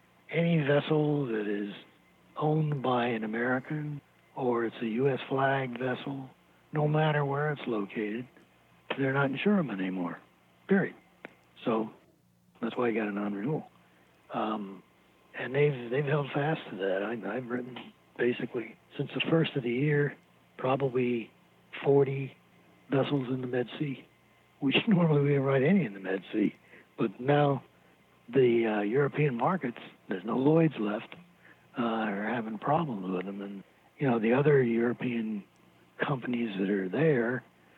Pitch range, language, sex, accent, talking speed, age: 105-145 Hz, English, male, American, 145 wpm, 60-79